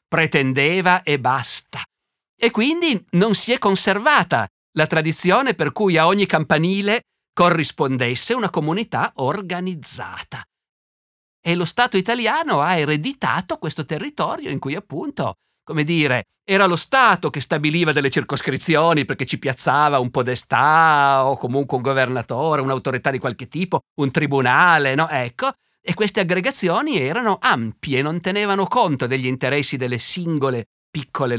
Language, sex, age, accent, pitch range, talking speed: Italian, male, 50-69, native, 120-180 Hz, 135 wpm